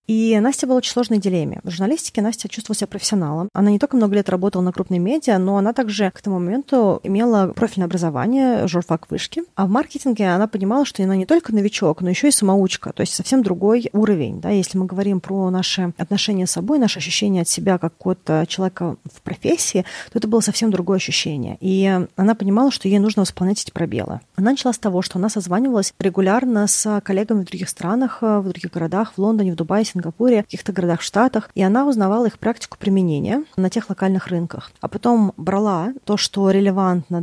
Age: 30-49